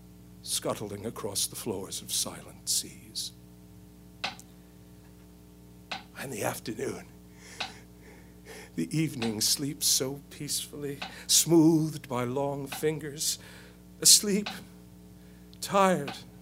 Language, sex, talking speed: English, male, 75 wpm